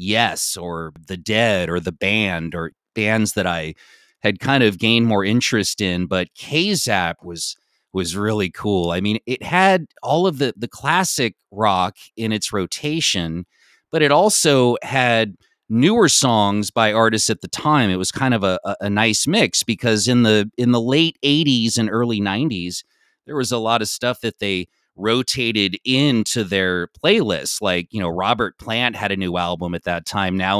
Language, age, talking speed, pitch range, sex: English, 30-49, 180 wpm, 95-120 Hz, male